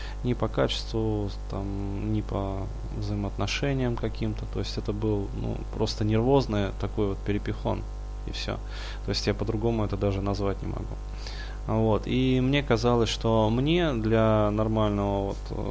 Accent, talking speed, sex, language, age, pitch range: native, 145 wpm, male, Russian, 20-39, 100-115 Hz